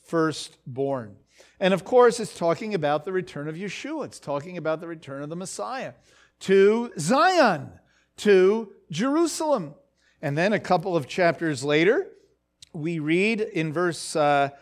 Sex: male